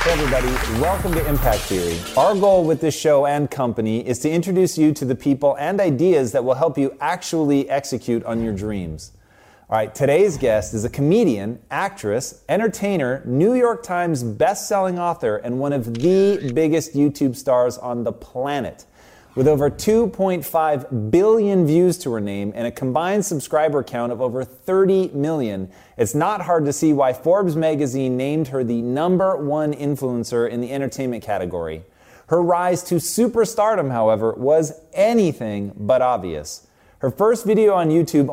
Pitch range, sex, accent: 125-175 Hz, male, American